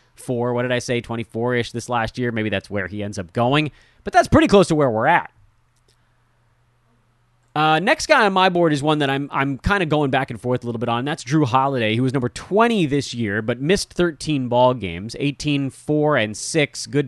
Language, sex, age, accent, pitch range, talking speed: English, male, 30-49, American, 115-150 Hz, 225 wpm